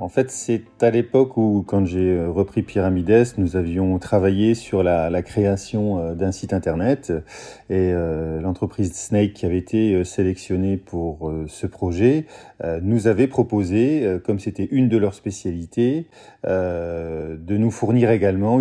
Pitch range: 95-120 Hz